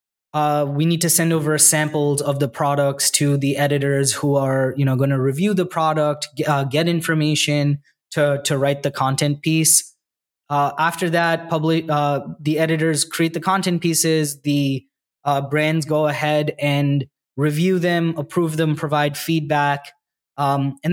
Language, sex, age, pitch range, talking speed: English, male, 20-39, 145-160 Hz, 165 wpm